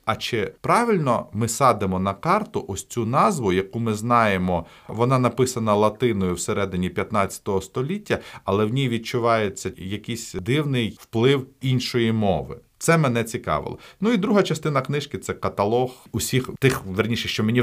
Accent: native